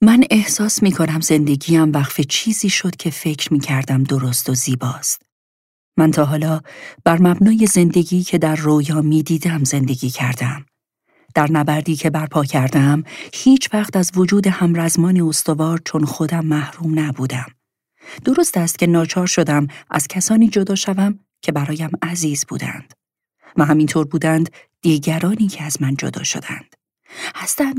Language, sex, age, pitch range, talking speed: Persian, female, 40-59, 150-195 Hz, 145 wpm